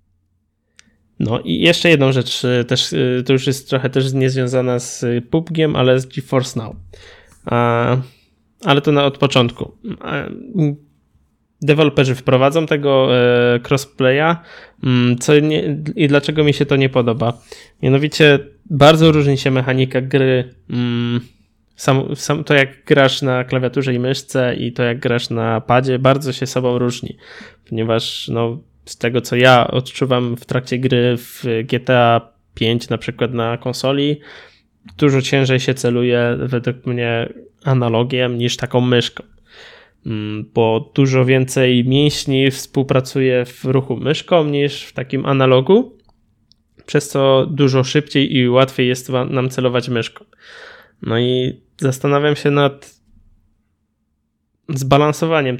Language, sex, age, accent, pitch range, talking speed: Polish, male, 20-39, native, 120-140 Hz, 125 wpm